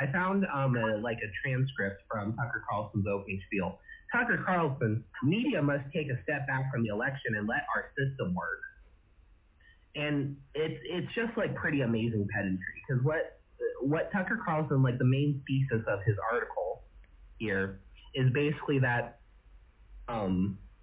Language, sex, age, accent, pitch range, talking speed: English, male, 30-49, American, 100-145 Hz, 155 wpm